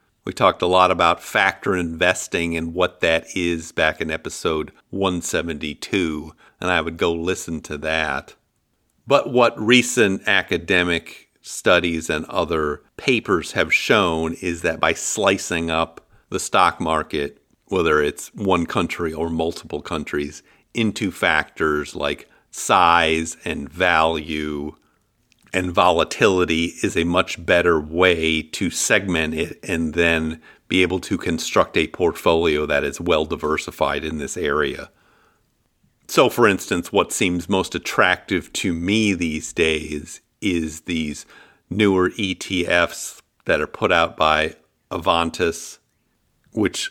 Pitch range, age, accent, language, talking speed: 80-90 Hz, 50-69, American, English, 130 wpm